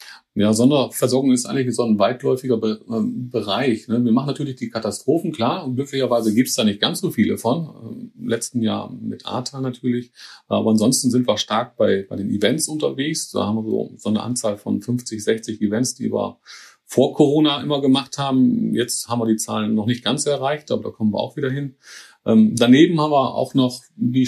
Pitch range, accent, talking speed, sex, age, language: 110-125 Hz, German, 205 wpm, male, 40-59, German